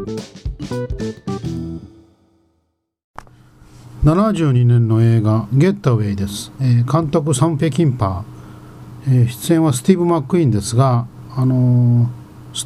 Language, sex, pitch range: Japanese, male, 110-155 Hz